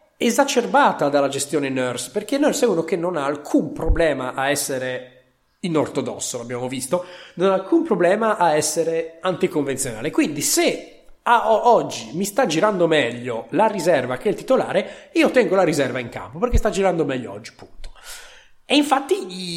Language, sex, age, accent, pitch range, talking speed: Italian, male, 30-49, native, 140-195 Hz, 170 wpm